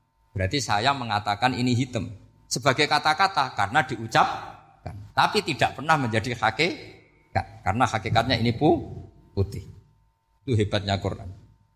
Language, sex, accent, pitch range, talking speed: Indonesian, male, native, 105-130 Hz, 110 wpm